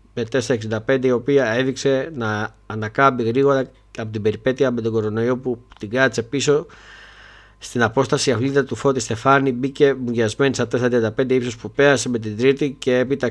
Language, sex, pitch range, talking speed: Greek, male, 105-135 Hz, 165 wpm